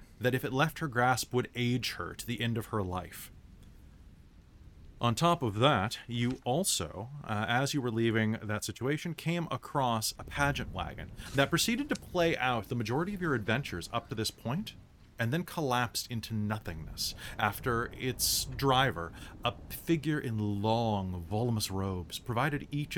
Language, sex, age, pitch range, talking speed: English, male, 30-49, 95-125 Hz, 165 wpm